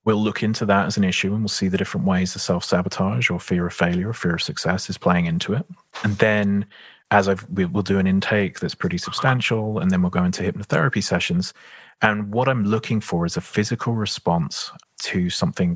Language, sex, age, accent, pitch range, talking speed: English, male, 30-49, British, 90-125 Hz, 220 wpm